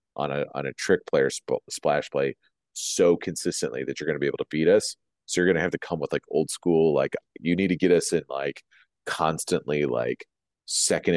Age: 30-49